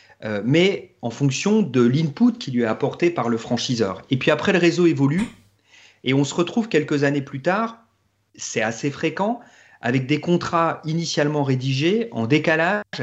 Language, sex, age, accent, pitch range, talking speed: French, male, 40-59, French, 115-165 Hz, 165 wpm